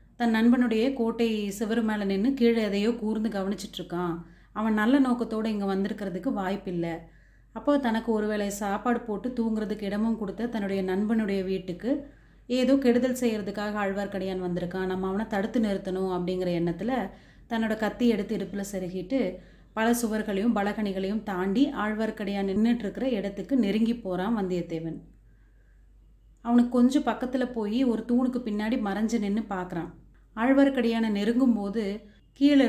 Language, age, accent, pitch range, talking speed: Tamil, 30-49, native, 190-235 Hz, 120 wpm